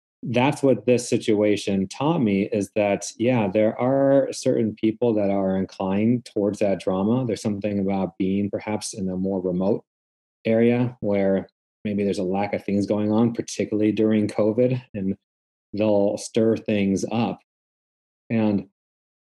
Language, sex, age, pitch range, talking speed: English, male, 30-49, 95-115 Hz, 145 wpm